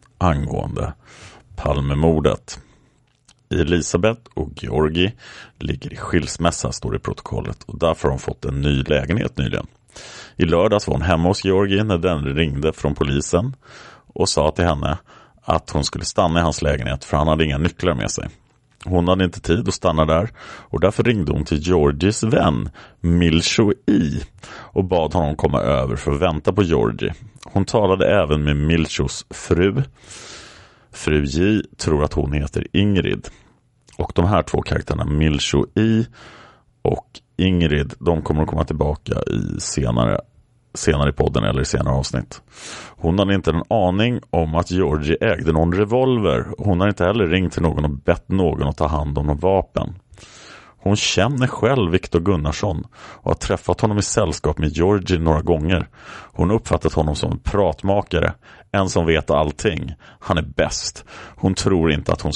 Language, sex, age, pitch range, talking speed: Swedish, male, 30-49, 75-95 Hz, 165 wpm